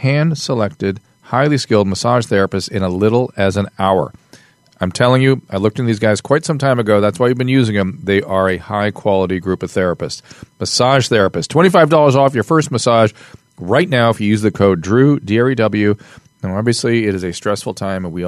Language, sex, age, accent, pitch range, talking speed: English, male, 40-59, American, 100-140 Hz, 205 wpm